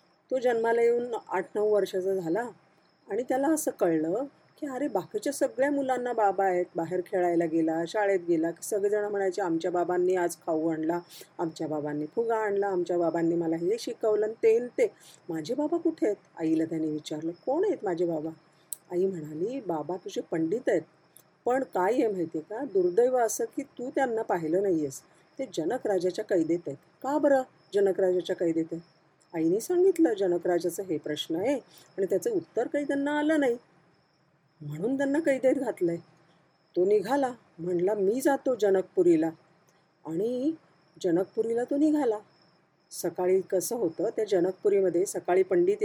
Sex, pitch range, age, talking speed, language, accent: female, 165-245 Hz, 40-59, 155 wpm, Marathi, native